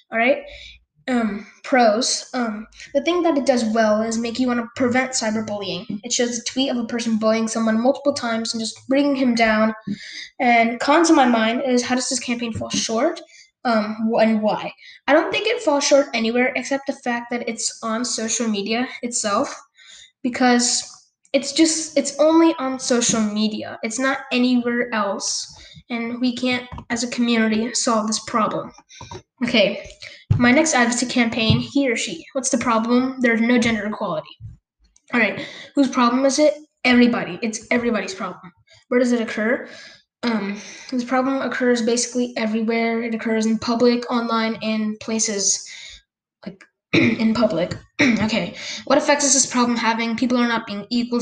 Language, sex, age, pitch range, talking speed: English, female, 10-29, 225-260 Hz, 165 wpm